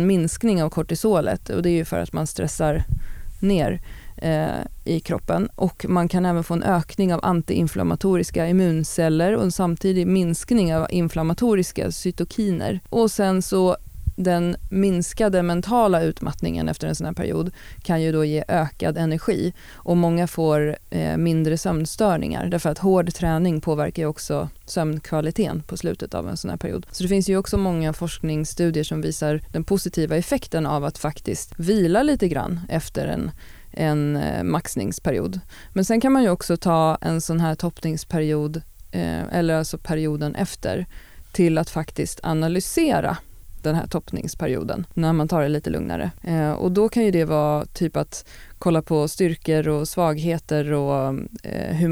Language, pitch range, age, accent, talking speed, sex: Swedish, 155-180 Hz, 30-49, native, 160 wpm, female